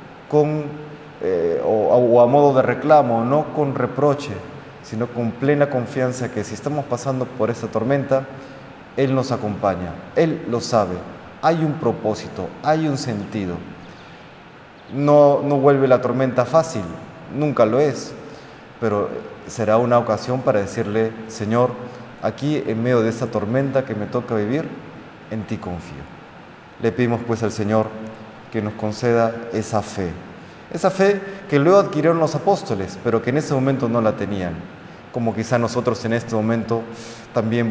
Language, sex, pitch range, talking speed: Spanish, male, 105-135 Hz, 150 wpm